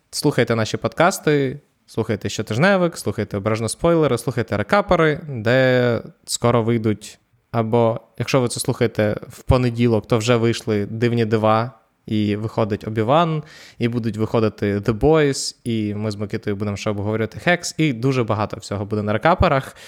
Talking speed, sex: 145 wpm, male